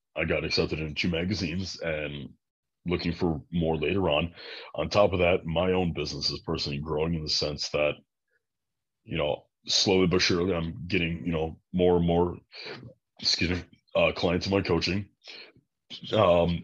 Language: English